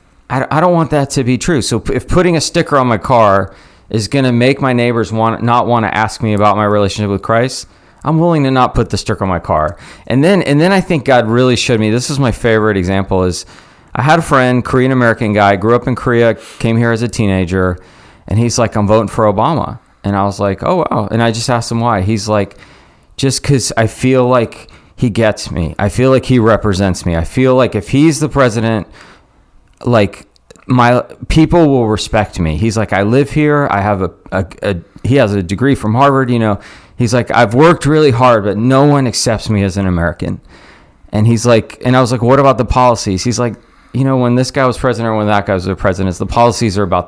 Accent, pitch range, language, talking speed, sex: American, 100-130 Hz, English, 235 wpm, male